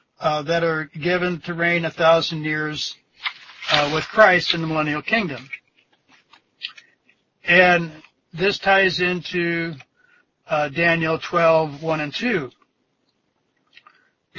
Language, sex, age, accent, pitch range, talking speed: English, male, 60-79, American, 155-180 Hz, 110 wpm